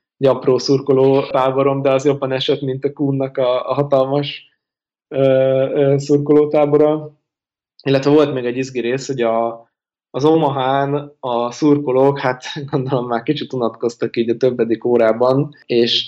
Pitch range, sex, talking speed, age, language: 120-140 Hz, male, 130 wpm, 20-39, Hungarian